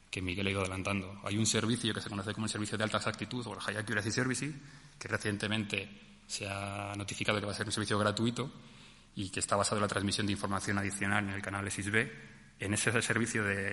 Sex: male